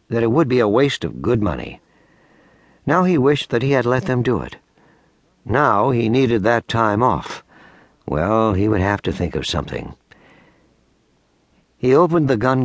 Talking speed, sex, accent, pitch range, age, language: 175 wpm, male, American, 100-130 Hz, 60-79, English